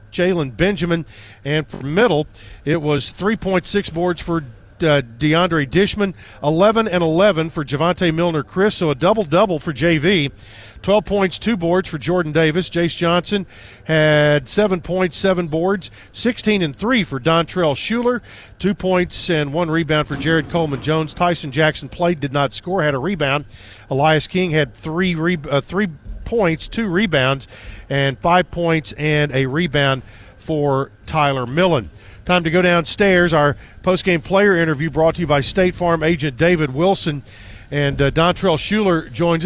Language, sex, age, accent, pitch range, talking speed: English, male, 50-69, American, 145-180 Hz, 165 wpm